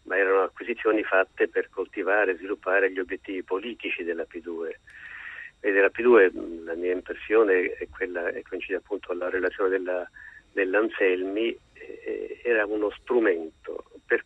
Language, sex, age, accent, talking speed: Italian, male, 50-69, native, 140 wpm